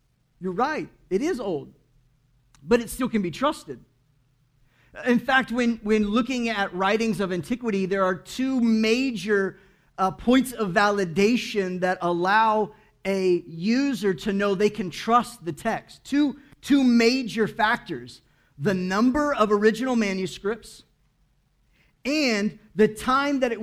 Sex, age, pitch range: male, 40-59, 185-235 Hz